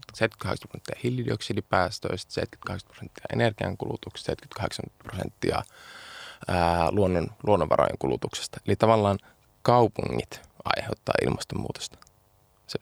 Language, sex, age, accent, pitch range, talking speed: Finnish, male, 20-39, native, 95-110 Hz, 75 wpm